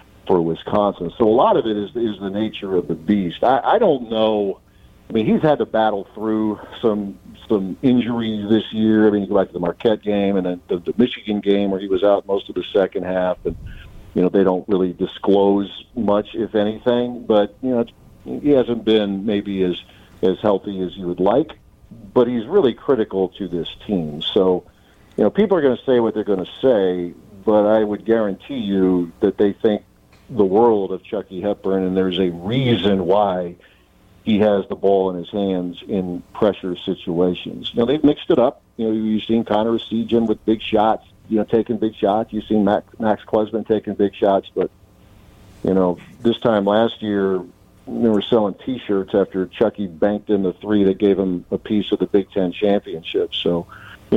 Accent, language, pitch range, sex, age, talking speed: American, English, 95-110 Hz, male, 50-69, 200 wpm